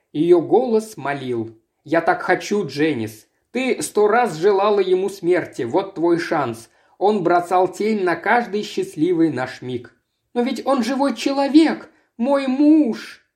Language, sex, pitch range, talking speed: Russian, male, 165-255 Hz, 140 wpm